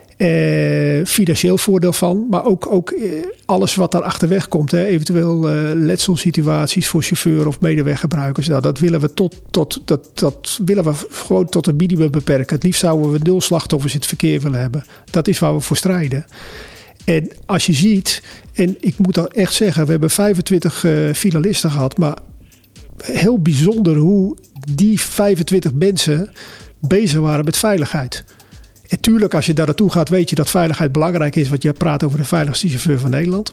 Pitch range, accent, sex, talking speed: 155-185 Hz, Dutch, male, 180 wpm